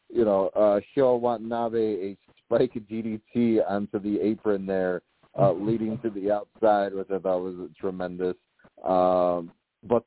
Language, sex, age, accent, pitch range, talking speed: English, male, 30-49, American, 95-115 Hz, 145 wpm